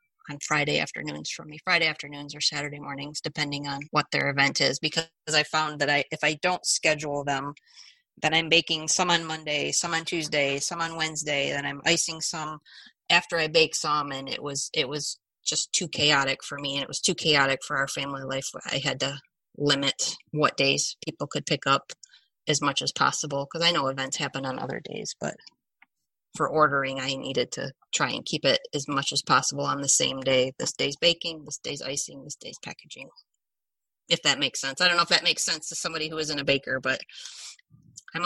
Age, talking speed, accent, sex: 30-49, 210 wpm, American, female